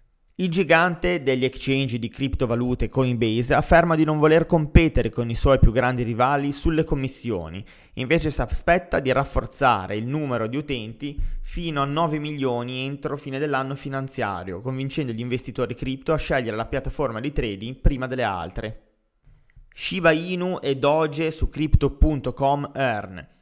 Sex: male